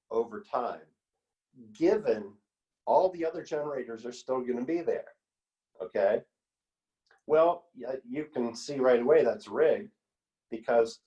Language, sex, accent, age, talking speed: English, male, American, 40-59, 125 wpm